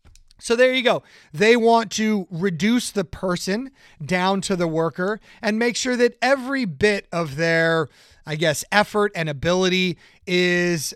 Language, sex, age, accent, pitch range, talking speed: English, male, 30-49, American, 165-205 Hz, 155 wpm